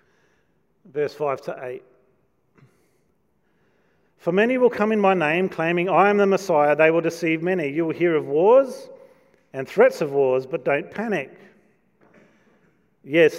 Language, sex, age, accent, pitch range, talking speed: English, male, 40-59, Australian, 155-200 Hz, 150 wpm